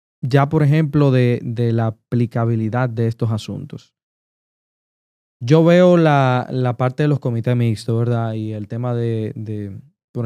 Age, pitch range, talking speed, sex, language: 20-39, 120-145 Hz, 150 wpm, male, Spanish